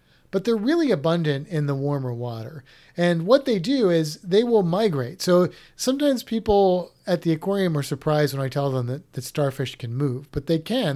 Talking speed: 195 wpm